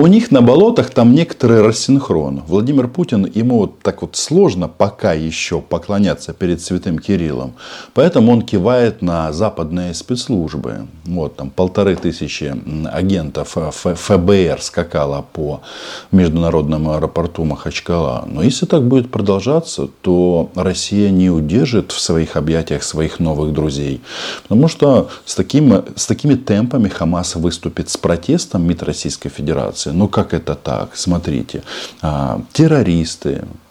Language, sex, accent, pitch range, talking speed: Russian, male, native, 80-100 Hz, 130 wpm